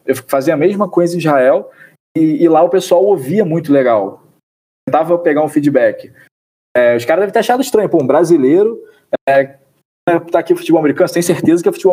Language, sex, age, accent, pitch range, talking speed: Portuguese, male, 20-39, Brazilian, 130-175 Hz, 200 wpm